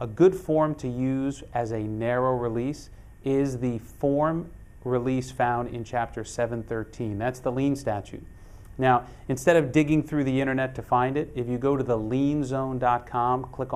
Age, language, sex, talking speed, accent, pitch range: 30-49, English, male, 165 wpm, American, 115-140 Hz